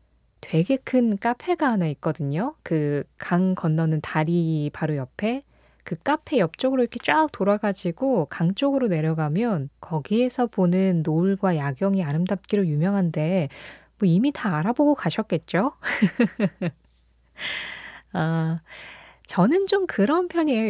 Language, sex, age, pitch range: Korean, female, 20-39, 160-235 Hz